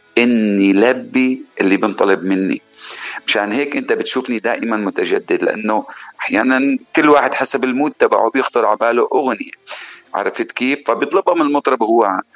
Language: Arabic